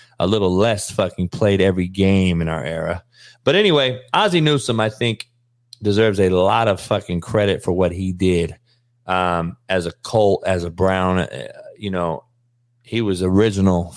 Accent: American